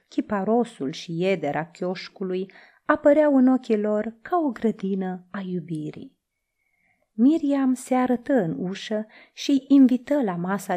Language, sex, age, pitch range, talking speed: Romanian, female, 30-49, 175-245 Hz, 125 wpm